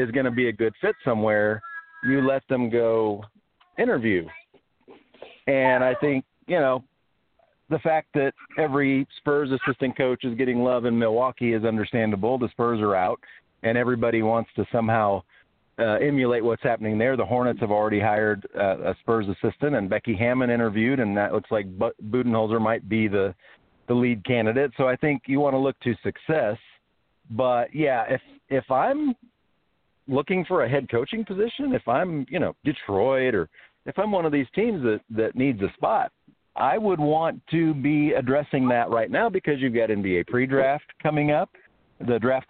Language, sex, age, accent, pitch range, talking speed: English, male, 40-59, American, 115-140 Hz, 175 wpm